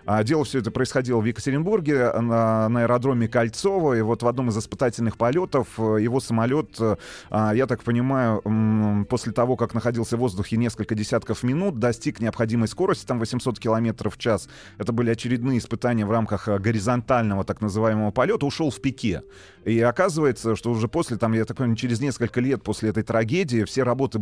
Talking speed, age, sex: 170 wpm, 30-49, male